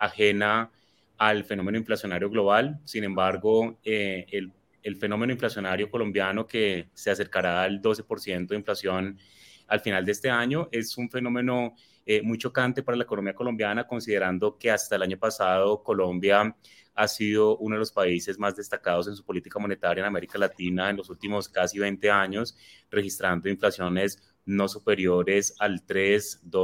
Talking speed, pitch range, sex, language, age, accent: 155 wpm, 95-115 Hz, male, Spanish, 30-49, Colombian